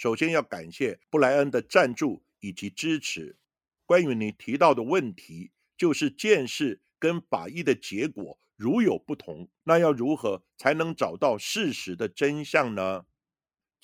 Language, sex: Chinese, male